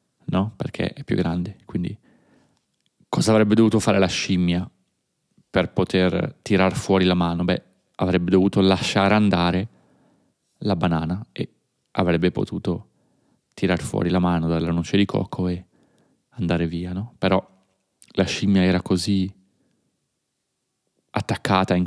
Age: 30-49